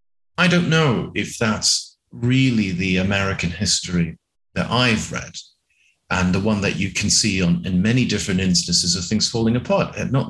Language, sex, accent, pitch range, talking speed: English, male, British, 90-125 Hz, 170 wpm